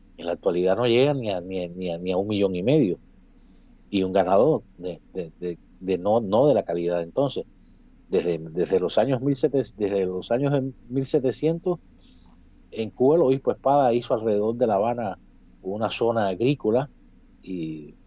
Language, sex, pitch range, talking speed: Spanish, male, 95-135 Hz, 165 wpm